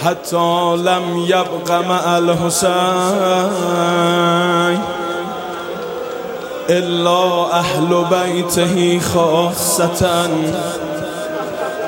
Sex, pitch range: male, 170-180 Hz